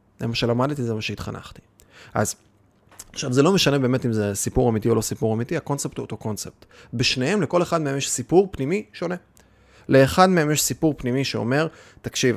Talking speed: 190 wpm